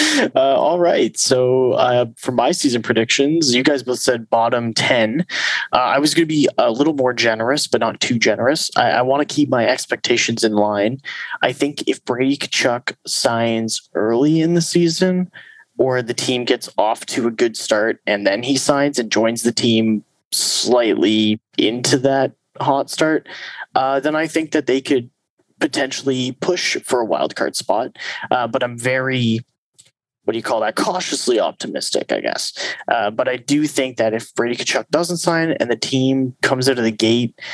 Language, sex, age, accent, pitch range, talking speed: English, male, 20-39, American, 115-135 Hz, 180 wpm